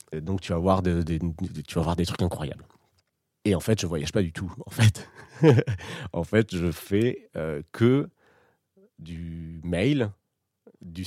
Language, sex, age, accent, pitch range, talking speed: French, male, 30-49, French, 90-115 Hz, 185 wpm